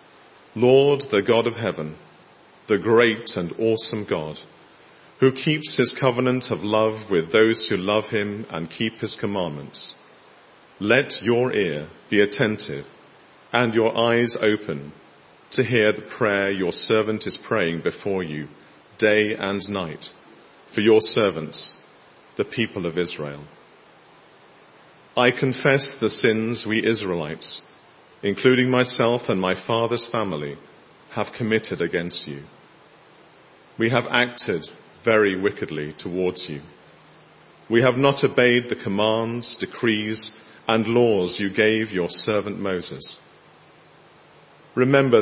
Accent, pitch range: British, 95-120 Hz